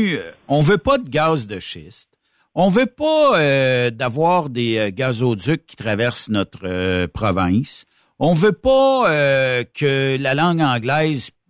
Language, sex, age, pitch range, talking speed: French, male, 60-79, 120-175 Hz, 140 wpm